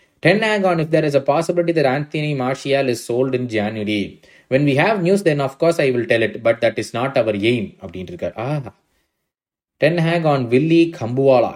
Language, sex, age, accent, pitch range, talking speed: Tamil, male, 20-39, native, 120-165 Hz, 210 wpm